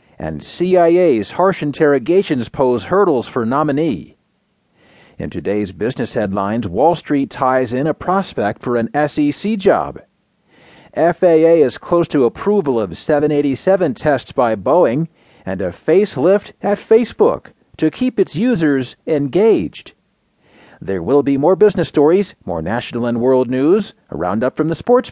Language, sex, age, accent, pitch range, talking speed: English, male, 40-59, American, 130-175 Hz, 140 wpm